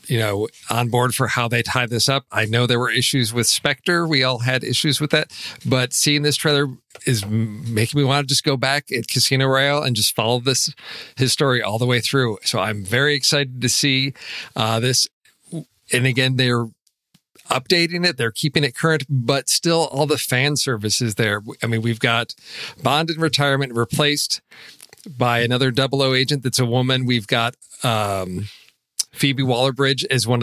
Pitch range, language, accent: 115-145 Hz, English, American